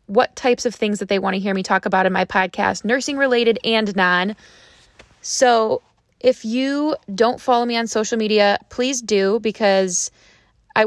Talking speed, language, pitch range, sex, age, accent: 175 wpm, English, 205-235 Hz, female, 20-39, American